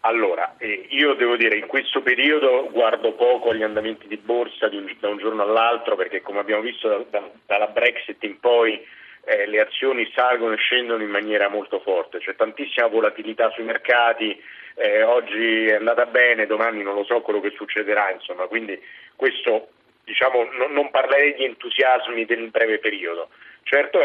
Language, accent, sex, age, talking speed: Italian, native, male, 40-59, 180 wpm